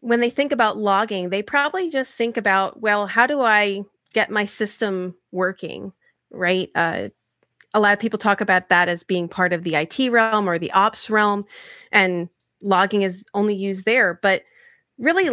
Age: 30-49